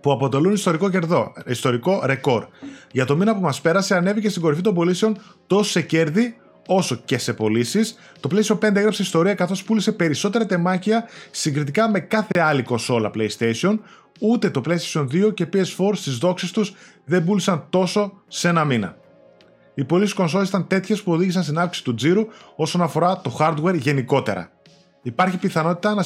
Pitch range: 140-195 Hz